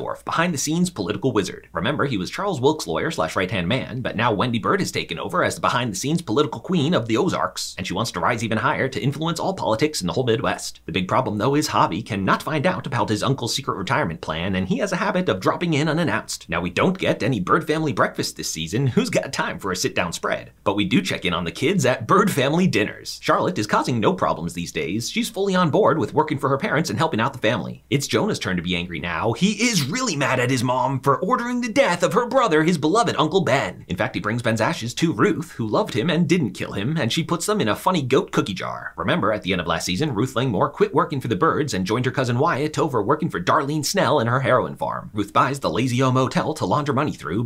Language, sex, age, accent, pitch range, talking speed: English, male, 30-49, American, 115-165 Hz, 260 wpm